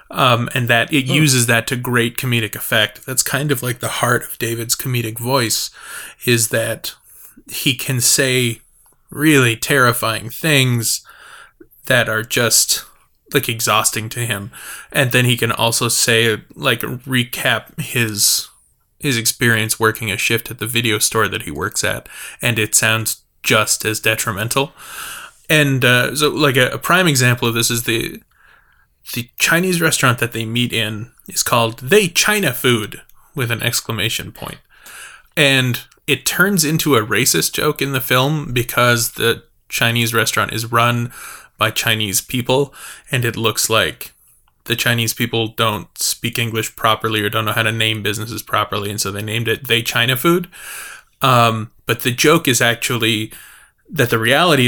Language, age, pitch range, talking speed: English, 20-39, 115-130 Hz, 160 wpm